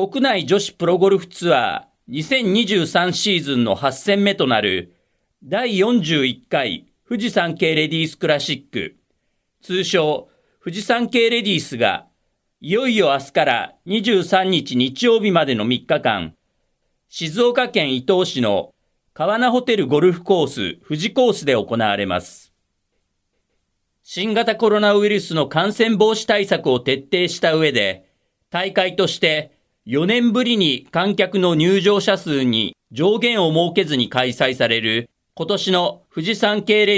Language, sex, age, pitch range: Japanese, male, 40-59, 125-210 Hz